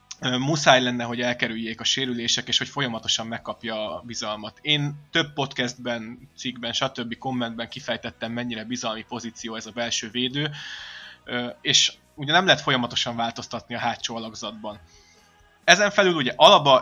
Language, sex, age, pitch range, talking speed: Hungarian, male, 20-39, 115-130 Hz, 135 wpm